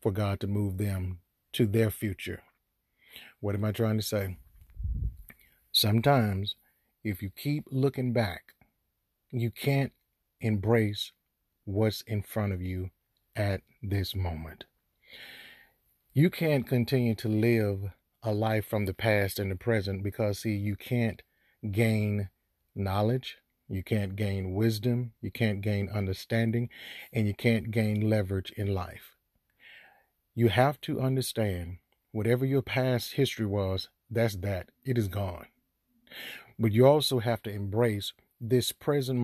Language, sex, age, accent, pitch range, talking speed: English, male, 40-59, American, 100-120 Hz, 135 wpm